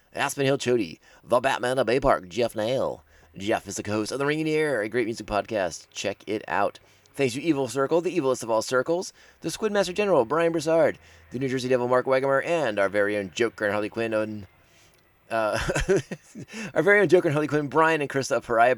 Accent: American